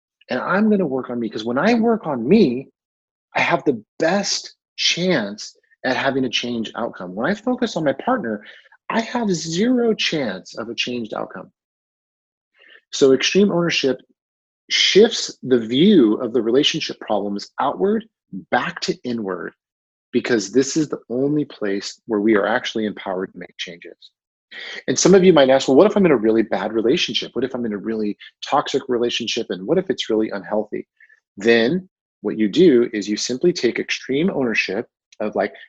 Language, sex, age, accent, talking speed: English, male, 30-49, American, 175 wpm